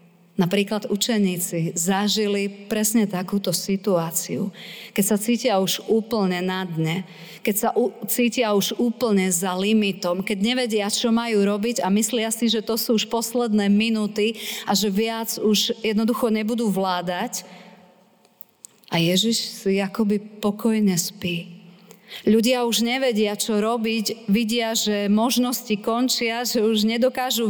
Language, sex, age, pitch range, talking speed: Slovak, female, 40-59, 195-230 Hz, 130 wpm